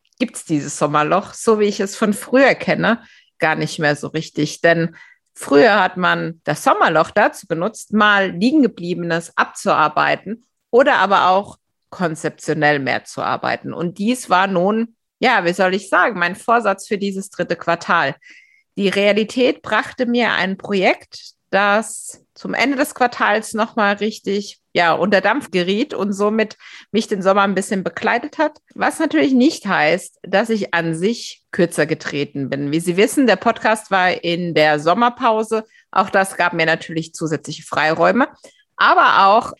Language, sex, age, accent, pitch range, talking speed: German, female, 50-69, German, 170-220 Hz, 160 wpm